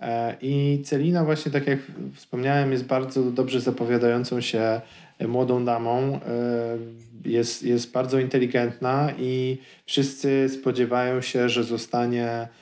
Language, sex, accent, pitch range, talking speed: Polish, male, native, 115-130 Hz, 110 wpm